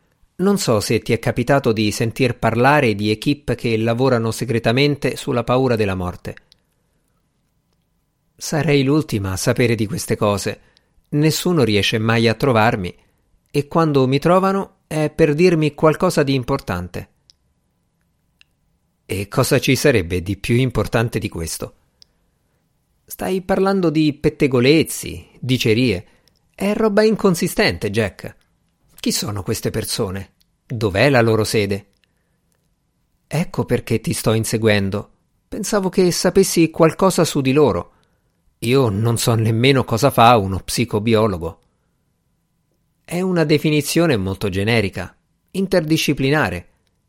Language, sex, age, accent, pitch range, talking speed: Italian, male, 50-69, native, 110-150 Hz, 115 wpm